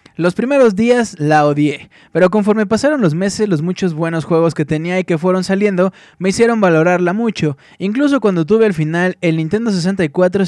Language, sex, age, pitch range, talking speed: Spanish, male, 20-39, 155-195 Hz, 185 wpm